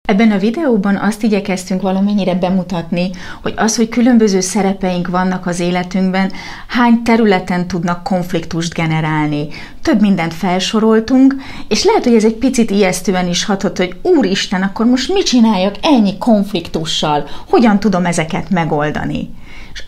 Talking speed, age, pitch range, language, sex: 135 wpm, 30-49, 170-220 Hz, Hungarian, female